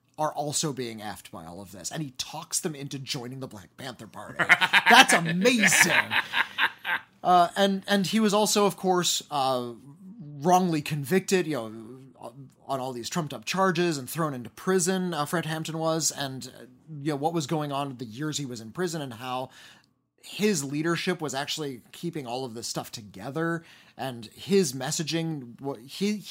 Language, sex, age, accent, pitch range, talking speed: English, male, 20-39, American, 125-165 Hz, 175 wpm